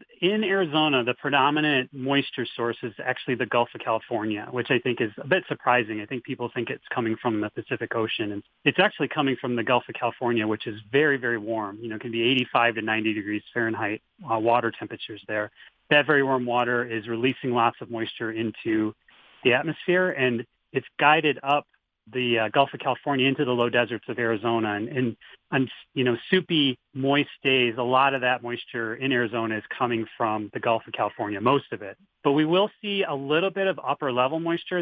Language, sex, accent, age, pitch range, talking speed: English, male, American, 30-49, 115-140 Hz, 200 wpm